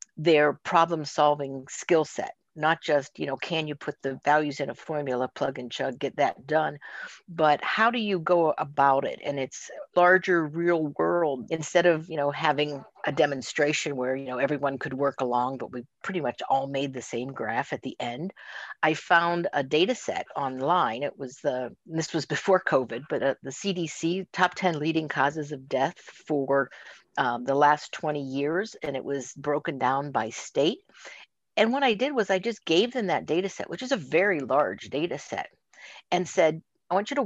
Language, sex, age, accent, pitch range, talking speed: English, female, 50-69, American, 140-190 Hz, 195 wpm